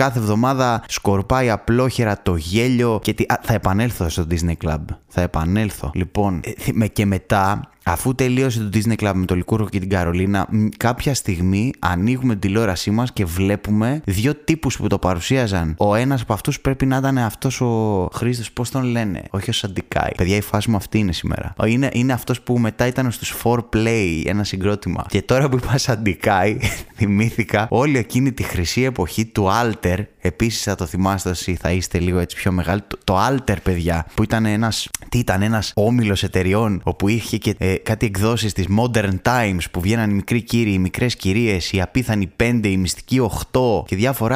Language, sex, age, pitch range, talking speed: Greek, male, 20-39, 95-120 Hz, 185 wpm